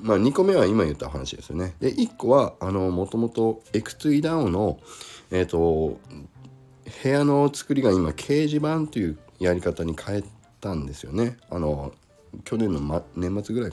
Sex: male